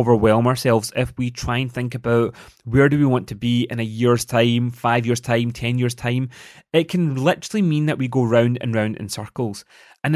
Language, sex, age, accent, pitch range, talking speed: English, male, 30-49, British, 120-150 Hz, 220 wpm